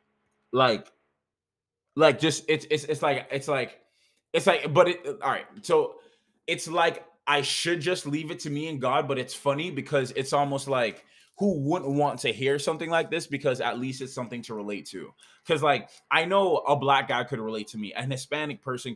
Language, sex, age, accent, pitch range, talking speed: English, male, 20-39, American, 120-155 Hz, 205 wpm